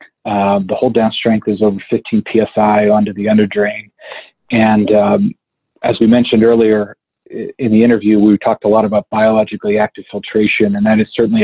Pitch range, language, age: 105-110 Hz, English, 40-59